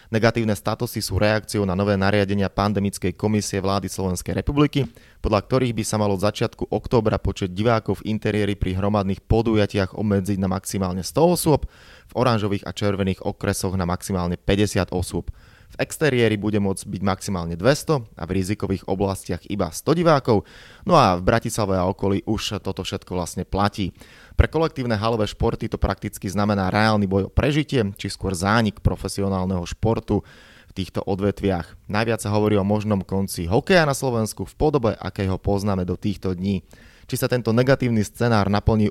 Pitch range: 95-110 Hz